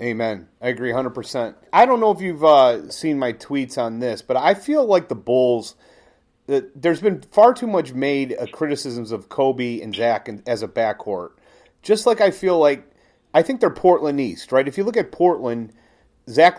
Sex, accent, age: male, American, 30-49